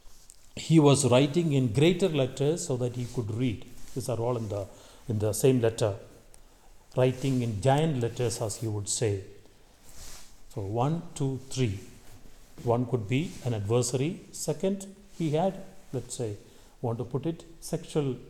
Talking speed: 155 wpm